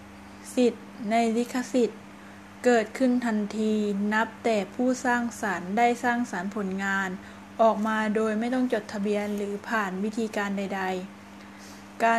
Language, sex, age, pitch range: Thai, female, 20-39, 195-235 Hz